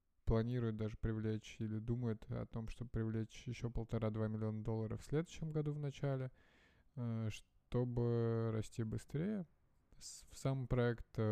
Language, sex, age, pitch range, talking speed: Russian, male, 20-39, 110-130 Hz, 125 wpm